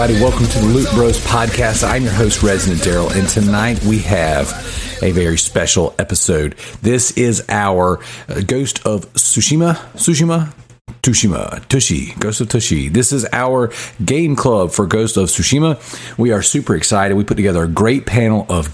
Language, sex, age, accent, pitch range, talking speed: English, male, 40-59, American, 95-120 Hz, 170 wpm